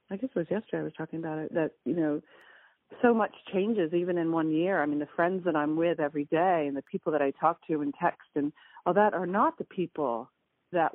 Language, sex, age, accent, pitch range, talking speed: English, female, 40-59, American, 145-180 Hz, 260 wpm